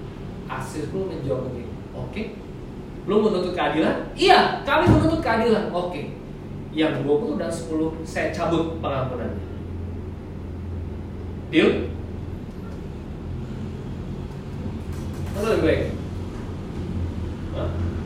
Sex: male